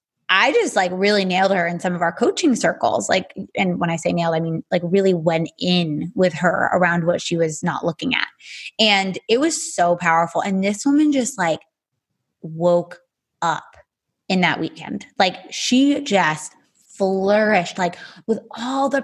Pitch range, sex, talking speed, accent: 185-260 Hz, female, 175 wpm, American